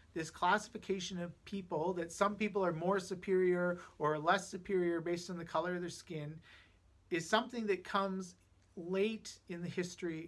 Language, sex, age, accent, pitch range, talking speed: English, male, 40-59, American, 155-200 Hz, 165 wpm